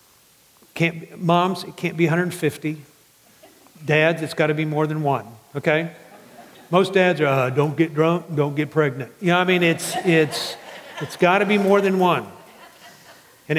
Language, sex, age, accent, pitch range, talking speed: English, male, 50-69, American, 140-165 Hz, 180 wpm